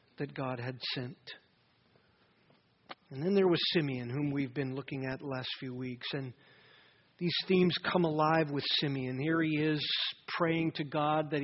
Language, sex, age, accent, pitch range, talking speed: English, male, 40-59, American, 145-185 Hz, 170 wpm